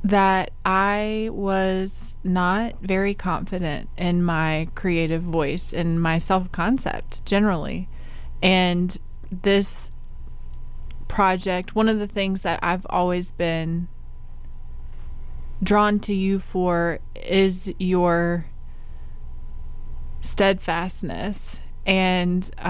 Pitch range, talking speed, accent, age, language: 165-190 Hz, 85 wpm, American, 20-39, English